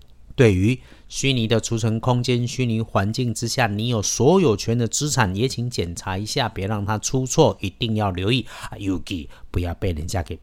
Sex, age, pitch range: male, 50-69, 100-130 Hz